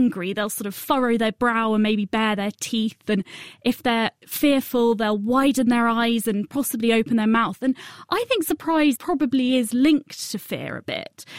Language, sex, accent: English, female, British